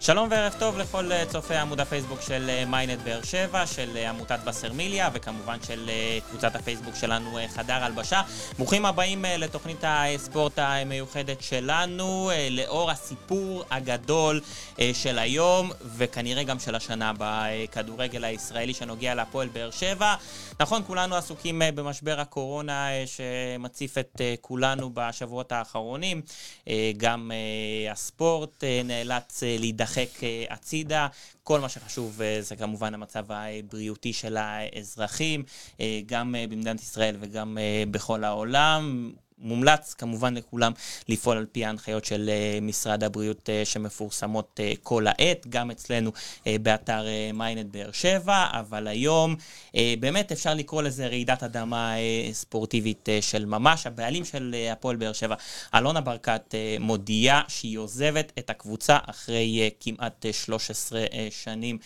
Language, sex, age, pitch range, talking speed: Hebrew, male, 20-39, 110-145 Hz, 125 wpm